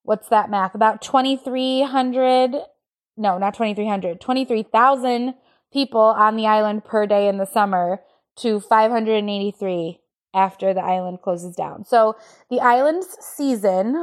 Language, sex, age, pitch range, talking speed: English, female, 20-39, 205-245 Hz, 125 wpm